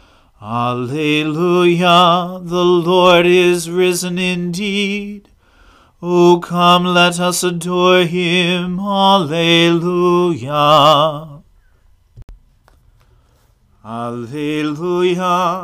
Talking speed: 55 wpm